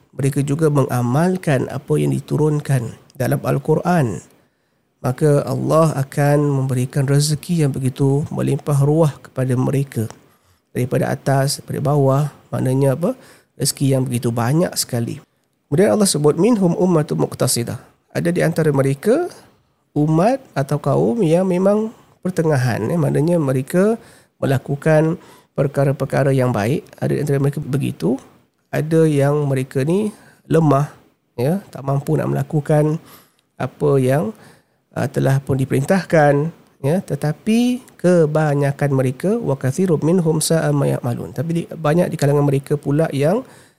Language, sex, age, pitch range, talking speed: Malay, male, 40-59, 135-160 Hz, 115 wpm